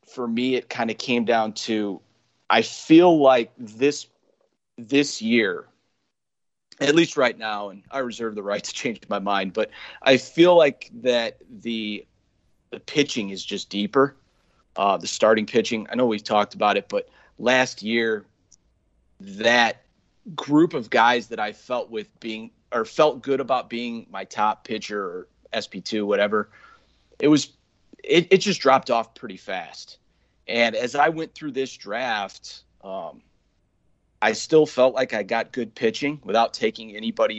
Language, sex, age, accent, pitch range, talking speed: English, male, 30-49, American, 105-145 Hz, 160 wpm